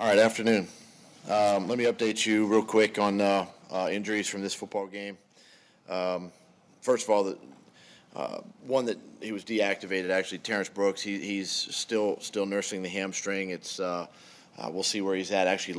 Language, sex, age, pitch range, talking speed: English, male, 30-49, 90-100 Hz, 180 wpm